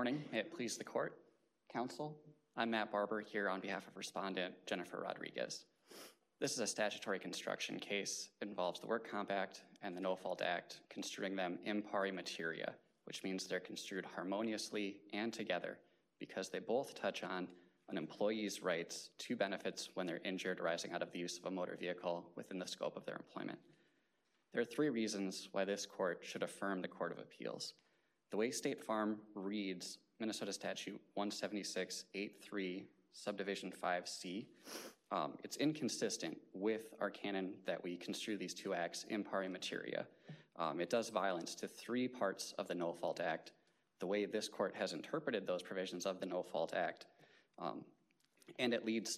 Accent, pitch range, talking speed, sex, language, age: American, 95-110 Hz, 170 wpm, male, English, 20-39